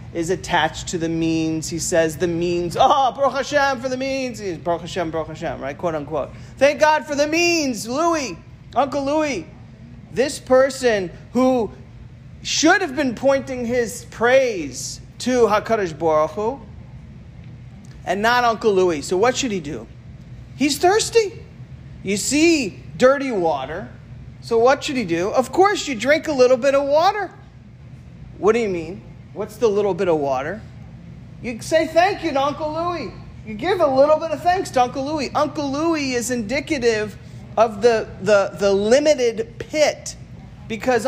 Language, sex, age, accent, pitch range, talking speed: English, male, 40-59, American, 185-275 Hz, 160 wpm